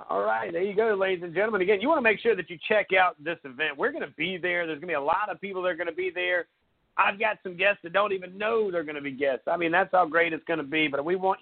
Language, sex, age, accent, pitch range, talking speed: English, male, 40-59, American, 145-180 Hz, 335 wpm